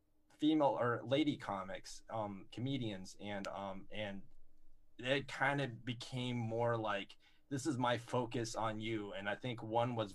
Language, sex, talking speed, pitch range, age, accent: English, male, 155 wpm, 105-125 Hz, 20-39, American